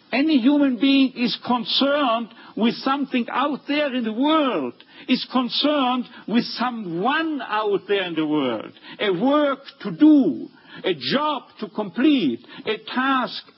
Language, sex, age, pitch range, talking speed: Hebrew, male, 60-79, 180-280 Hz, 135 wpm